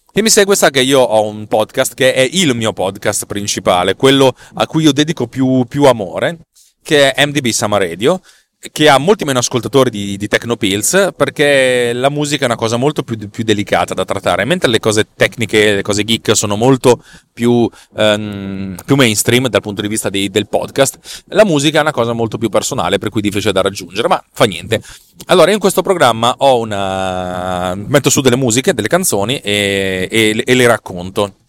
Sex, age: male, 30-49